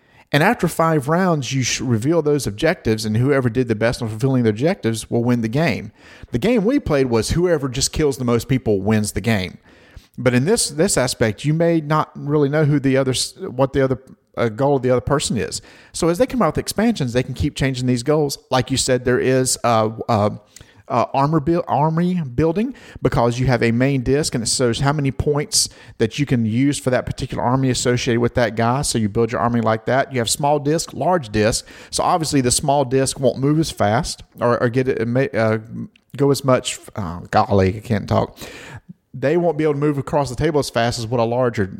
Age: 40-59